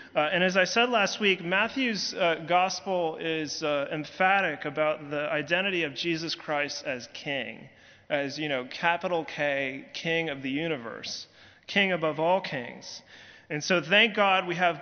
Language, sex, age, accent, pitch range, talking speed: English, male, 30-49, American, 150-185 Hz, 160 wpm